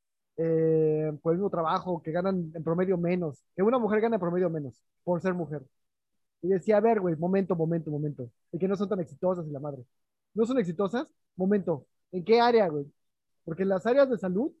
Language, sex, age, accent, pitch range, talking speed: Spanish, male, 20-39, Mexican, 170-225 Hz, 210 wpm